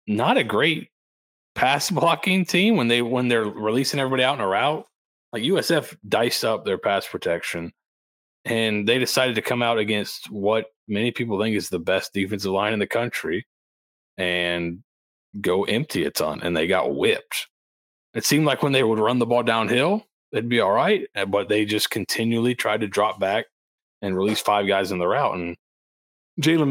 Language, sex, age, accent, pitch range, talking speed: English, male, 30-49, American, 85-120 Hz, 185 wpm